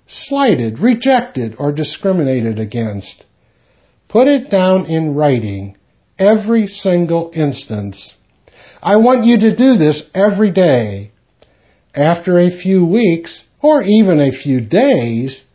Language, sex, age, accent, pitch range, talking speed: English, male, 60-79, American, 130-200 Hz, 115 wpm